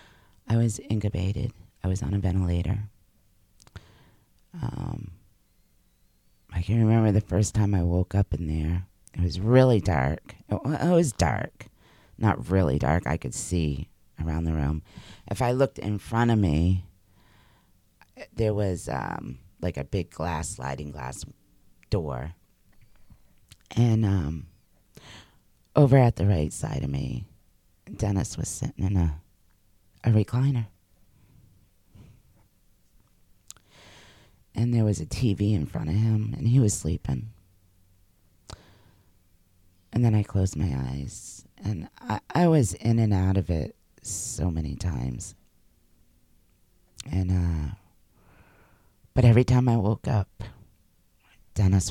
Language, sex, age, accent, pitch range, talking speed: English, female, 40-59, American, 90-110 Hz, 125 wpm